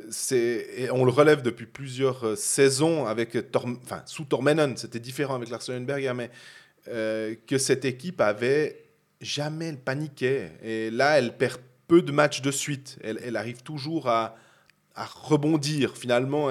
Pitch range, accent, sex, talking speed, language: 120-155 Hz, French, male, 155 wpm, French